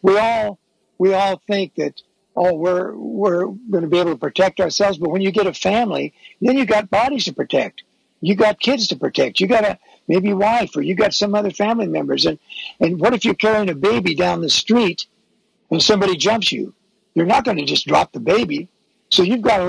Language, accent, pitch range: English, American, 170-205 Hz